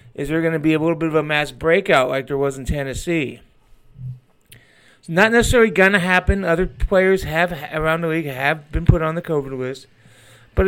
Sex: male